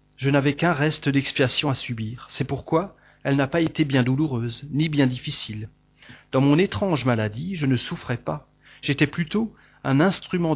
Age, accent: 40-59, French